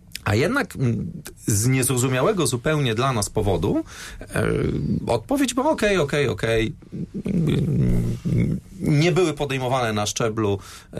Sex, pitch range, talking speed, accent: male, 100-145 Hz, 105 wpm, native